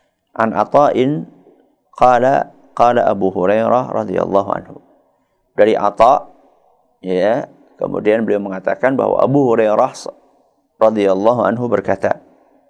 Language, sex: Malay, male